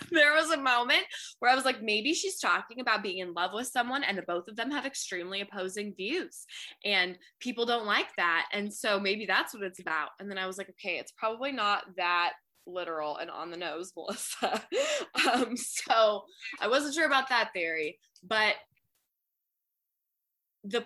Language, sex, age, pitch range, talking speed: English, female, 20-39, 180-240 Hz, 185 wpm